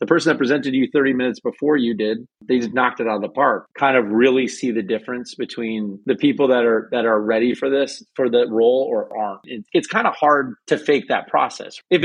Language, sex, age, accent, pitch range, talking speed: English, male, 30-49, American, 120-155 Hz, 245 wpm